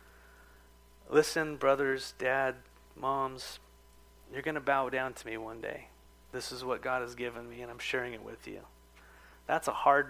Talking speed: 165 wpm